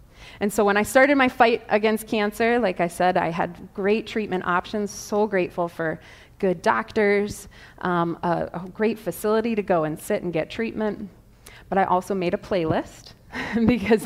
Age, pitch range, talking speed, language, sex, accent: 30-49, 180-220 Hz, 175 wpm, English, female, American